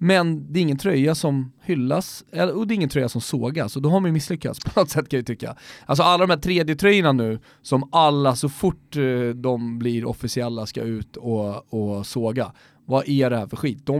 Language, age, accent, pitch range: Swedish, 30-49, native, 120-155 Hz